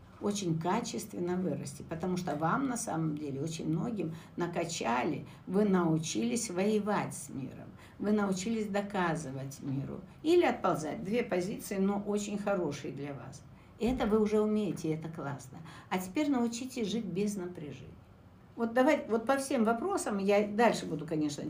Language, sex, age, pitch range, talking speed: Russian, female, 60-79, 155-215 Hz, 145 wpm